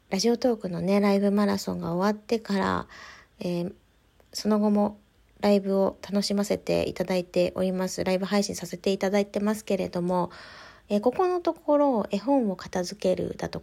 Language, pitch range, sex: Japanese, 180-220 Hz, female